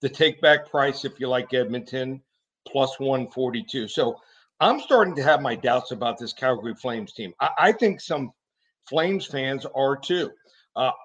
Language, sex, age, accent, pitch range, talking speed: English, male, 50-69, American, 135-175 Hz, 165 wpm